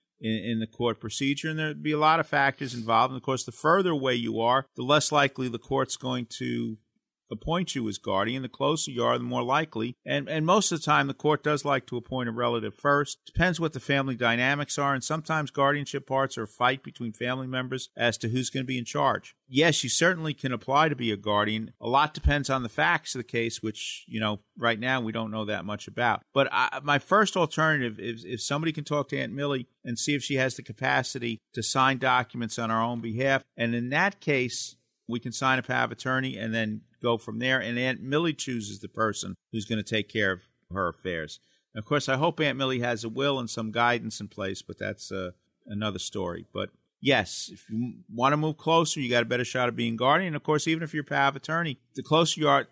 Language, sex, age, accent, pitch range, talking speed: English, male, 50-69, American, 115-145 Hz, 240 wpm